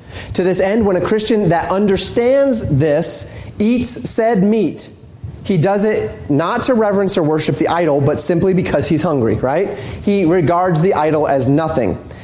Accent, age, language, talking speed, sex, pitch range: American, 30-49, English, 165 wpm, male, 160-205 Hz